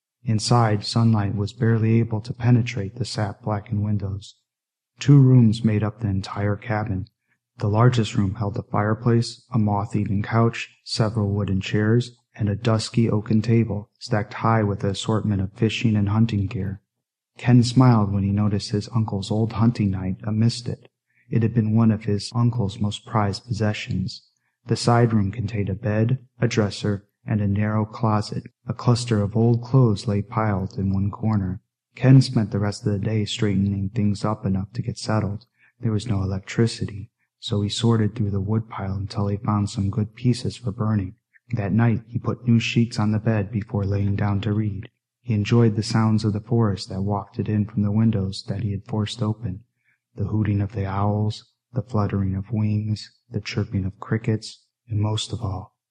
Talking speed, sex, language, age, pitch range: 180 wpm, male, English, 30-49, 100-115 Hz